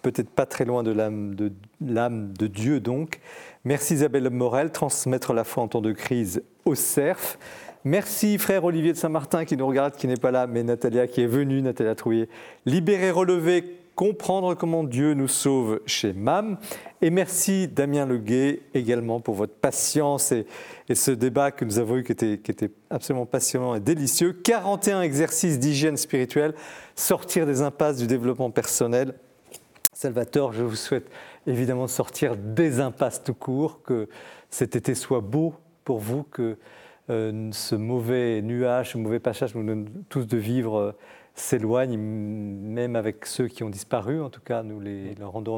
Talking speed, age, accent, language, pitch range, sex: 170 wpm, 40-59, French, French, 110-145 Hz, male